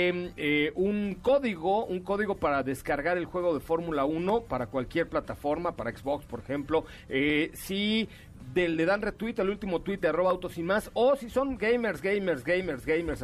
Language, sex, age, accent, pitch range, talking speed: Spanish, male, 40-59, Mexican, 140-185 Hz, 180 wpm